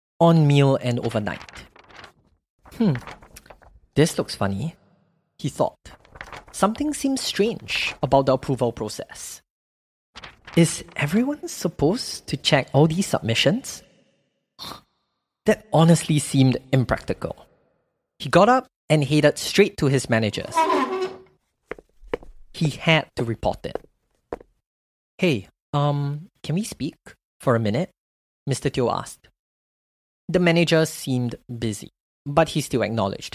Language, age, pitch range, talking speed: English, 30-49, 125-180 Hz, 110 wpm